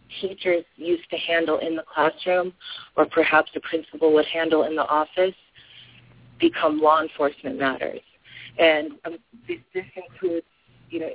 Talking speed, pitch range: 140 wpm, 155-180 Hz